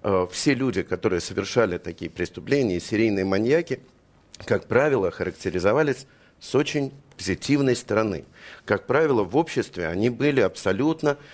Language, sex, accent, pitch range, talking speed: Russian, male, native, 95-140 Hz, 115 wpm